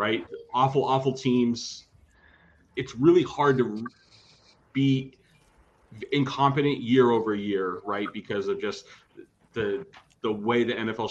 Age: 30-49